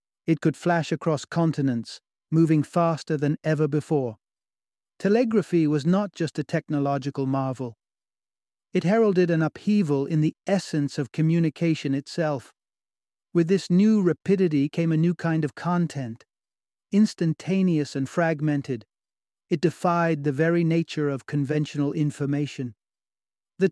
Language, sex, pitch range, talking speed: English, male, 140-165 Hz, 125 wpm